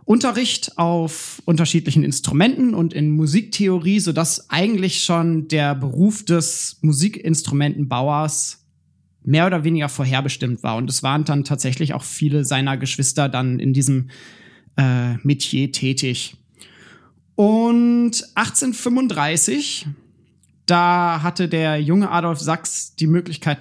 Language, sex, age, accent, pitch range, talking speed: German, male, 30-49, German, 145-185 Hz, 115 wpm